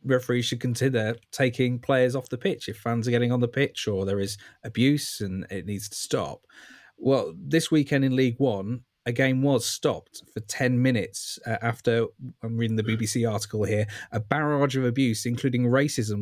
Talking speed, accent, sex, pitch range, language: 185 wpm, British, male, 110-135 Hz, English